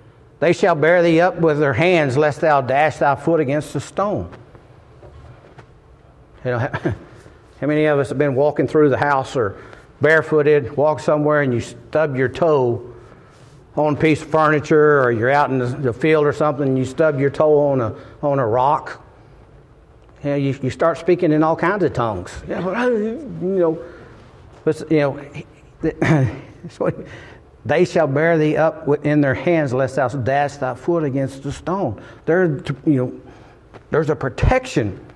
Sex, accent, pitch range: male, American, 135-160 Hz